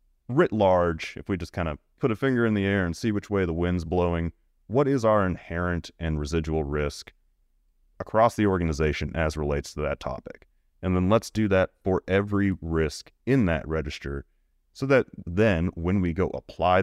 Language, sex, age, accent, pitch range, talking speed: English, male, 30-49, American, 75-95 Hz, 190 wpm